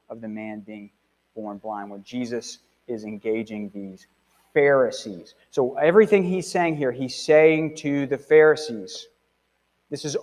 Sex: male